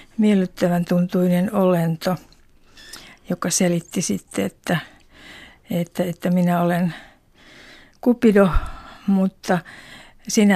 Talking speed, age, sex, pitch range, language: 80 wpm, 50-69, female, 175-200 Hz, Finnish